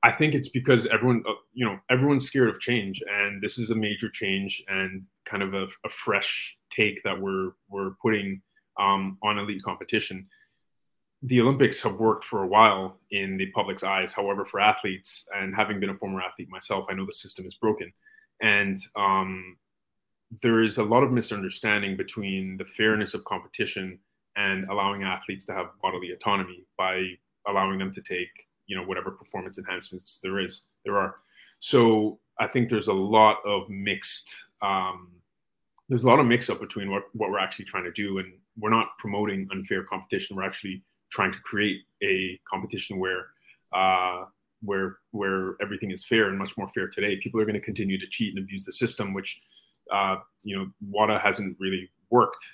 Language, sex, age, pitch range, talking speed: English, male, 20-39, 95-110 Hz, 185 wpm